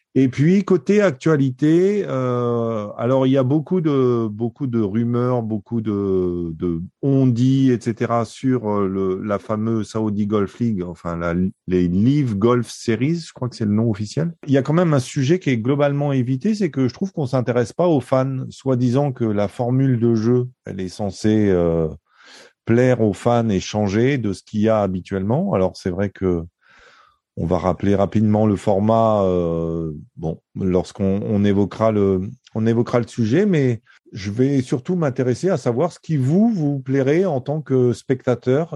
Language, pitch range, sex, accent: French, 105-135 Hz, male, French